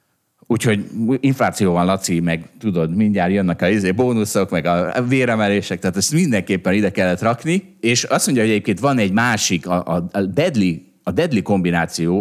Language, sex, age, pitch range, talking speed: Hungarian, male, 30-49, 90-125 Hz, 160 wpm